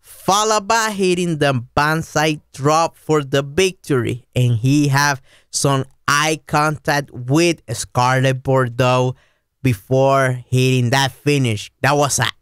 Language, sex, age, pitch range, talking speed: English, male, 20-39, 125-170 Hz, 115 wpm